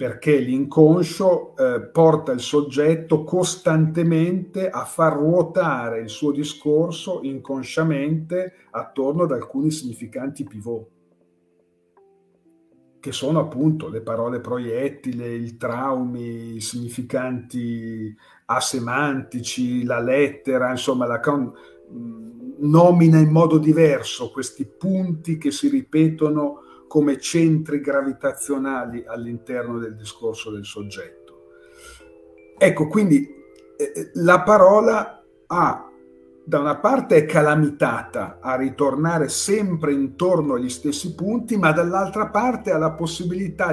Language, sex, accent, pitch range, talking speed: Italian, male, native, 120-170 Hz, 100 wpm